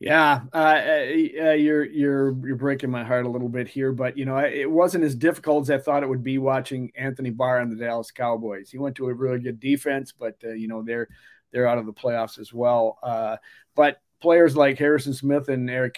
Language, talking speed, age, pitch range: English, 225 wpm, 40-59, 125-150 Hz